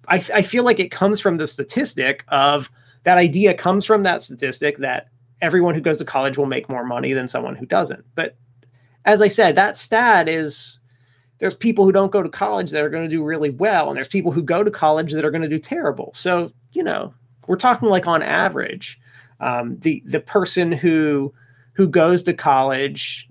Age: 30-49